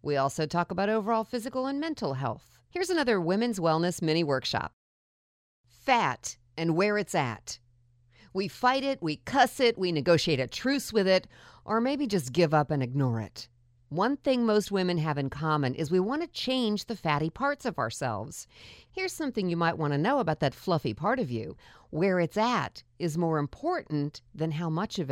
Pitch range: 145-210 Hz